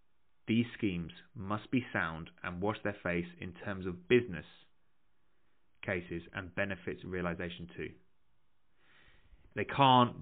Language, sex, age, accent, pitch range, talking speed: English, male, 30-49, British, 85-115 Hz, 115 wpm